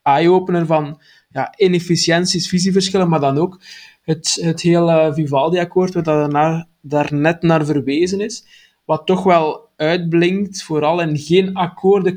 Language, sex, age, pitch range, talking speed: Dutch, male, 20-39, 150-175 Hz, 130 wpm